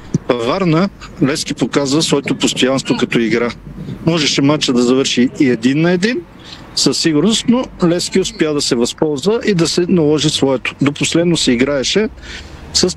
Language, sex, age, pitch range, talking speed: Bulgarian, male, 50-69, 120-160 Hz, 155 wpm